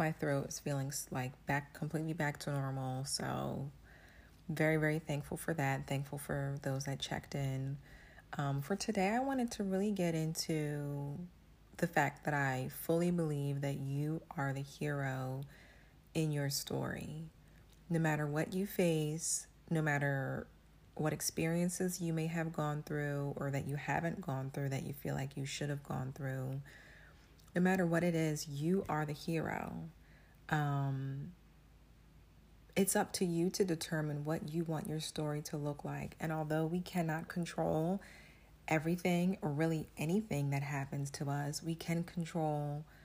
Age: 30-49